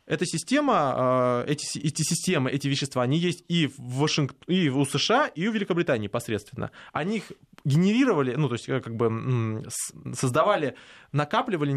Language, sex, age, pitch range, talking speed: Russian, male, 20-39, 135-170 Hz, 145 wpm